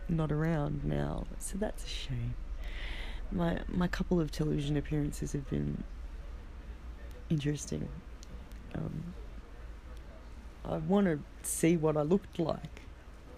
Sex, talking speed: female, 110 wpm